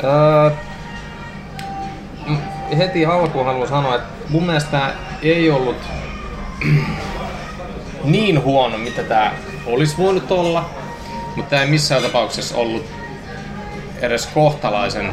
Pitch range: 120-165 Hz